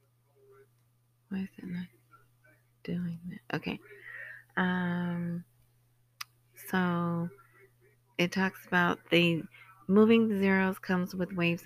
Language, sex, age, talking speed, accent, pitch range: English, female, 30-49, 100 wpm, American, 135-185 Hz